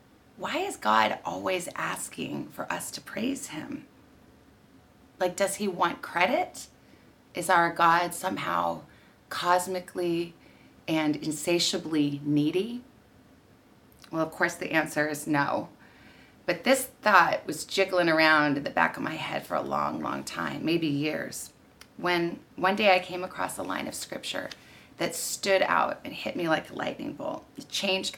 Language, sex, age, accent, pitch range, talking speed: English, female, 30-49, American, 145-190 Hz, 150 wpm